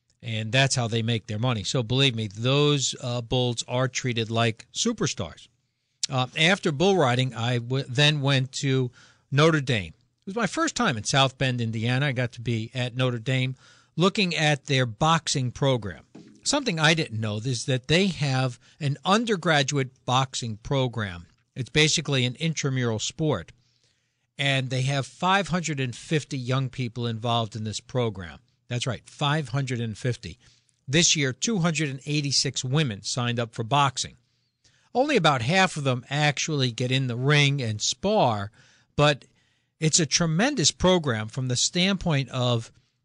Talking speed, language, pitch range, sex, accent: 150 wpm, English, 120-150 Hz, male, American